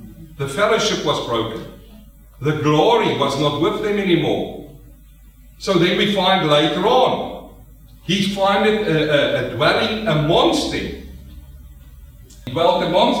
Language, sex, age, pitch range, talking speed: English, male, 50-69, 135-175 Hz, 125 wpm